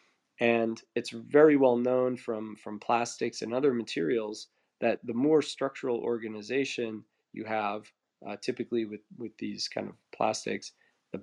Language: English